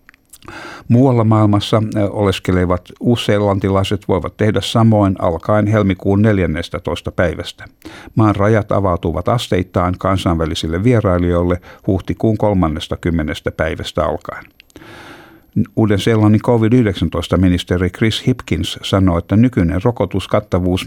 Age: 60-79